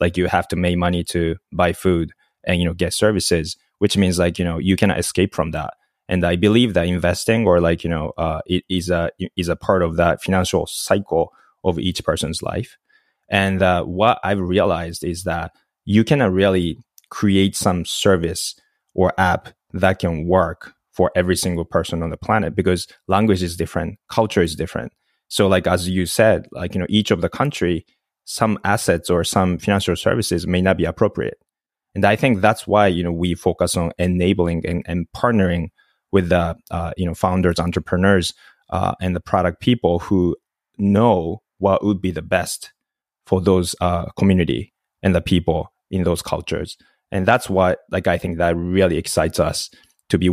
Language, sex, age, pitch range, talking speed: English, male, 20-39, 85-95 Hz, 185 wpm